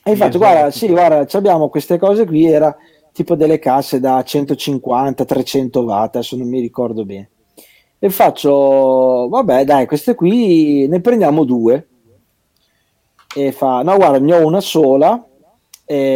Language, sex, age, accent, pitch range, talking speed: Italian, male, 40-59, native, 135-200 Hz, 150 wpm